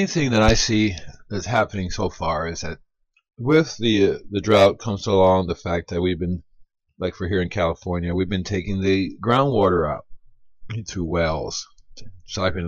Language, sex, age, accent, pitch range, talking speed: English, male, 40-59, American, 90-110 Hz, 170 wpm